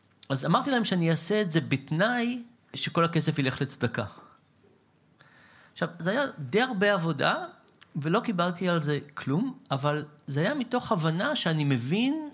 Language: Hebrew